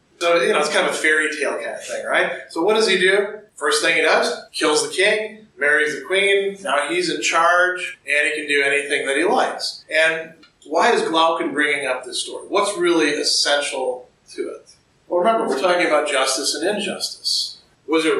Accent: American